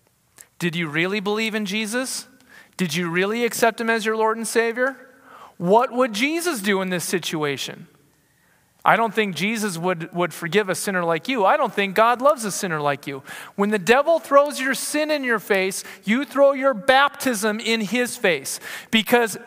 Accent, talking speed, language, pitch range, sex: American, 185 wpm, English, 205-260 Hz, male